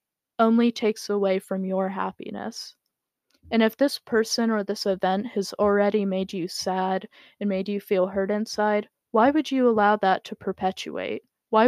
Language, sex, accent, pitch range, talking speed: English, female, American, 190-220 Hz, 165 wpm